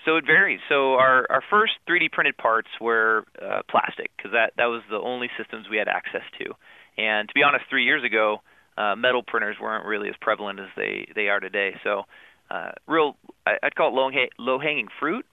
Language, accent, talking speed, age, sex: English, American, 210 wpm, 30-49, male